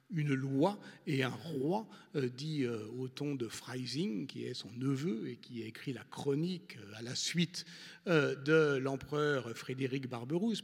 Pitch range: 130-170 Hz